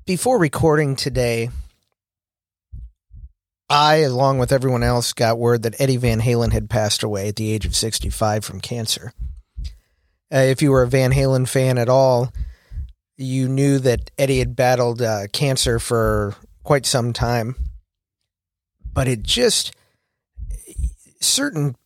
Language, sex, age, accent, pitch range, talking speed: English, male, 50-69, American, 105-135 Hz, 135 wpm